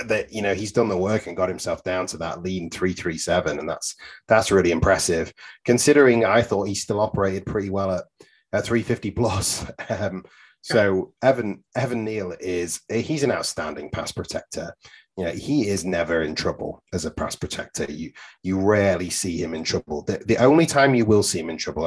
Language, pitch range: English, 90-115 Hz